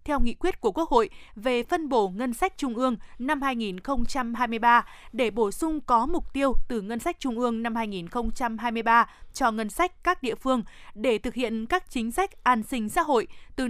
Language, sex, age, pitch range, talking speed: Vietnamese, female, 20-39, 225-275 Hz, 195 wpm